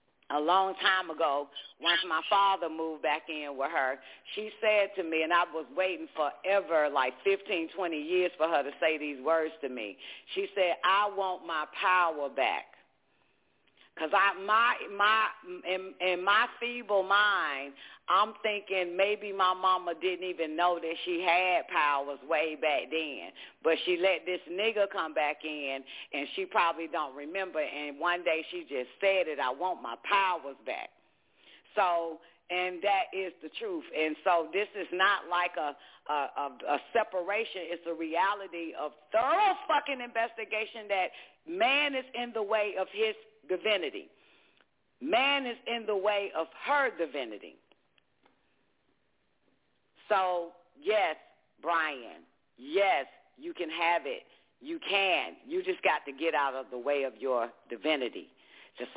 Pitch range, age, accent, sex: 155-210 Hz, 40-59, American, female